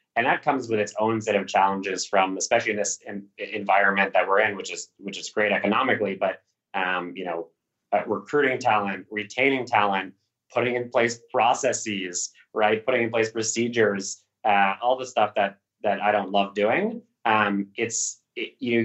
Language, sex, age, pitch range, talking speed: English, male, 30-49, 95-115 Hz, 180 wpm